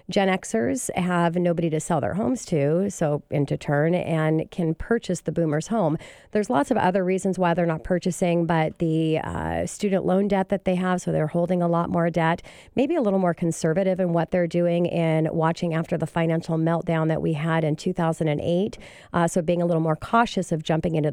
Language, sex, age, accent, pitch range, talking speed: English, female, 40-59, American, 160-185 Hz, 205 wpm